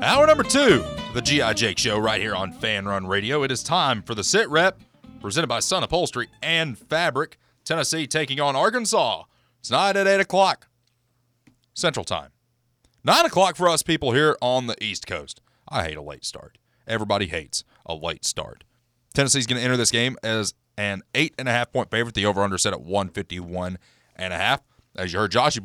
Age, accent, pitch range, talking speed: 30-49, American, 110-150 Hz, 175 wpm